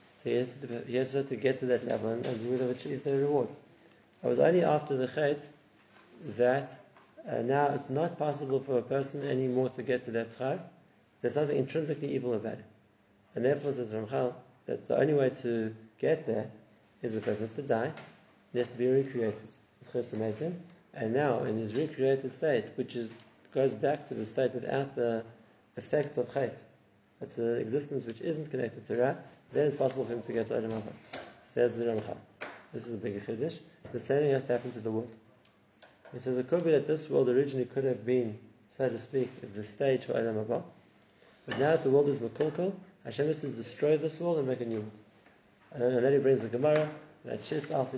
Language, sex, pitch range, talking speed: English, male, 115-140 Hz, 210 wpm